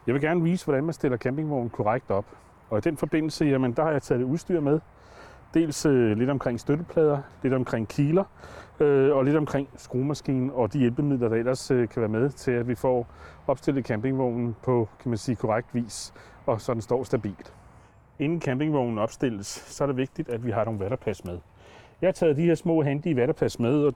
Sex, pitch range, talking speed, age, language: male, 120-155 Hz, 210 wpm, 30-49, Danish